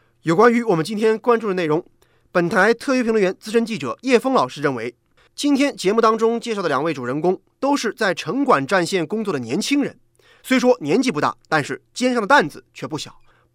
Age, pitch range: 30-49, 175-255 Hz